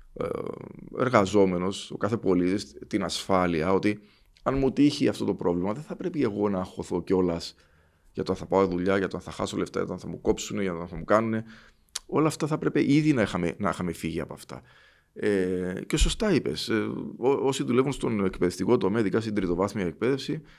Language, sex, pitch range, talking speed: English, male, 95-130 Hz, 200 wpm